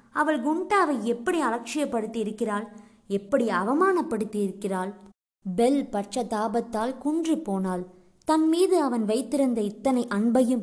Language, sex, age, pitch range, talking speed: Tamil, male, 20-39, 220-275 Hz, 95 wpm